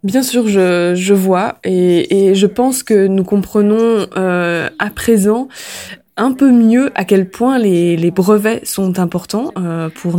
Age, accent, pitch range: 20-39, French, 185-240 Hz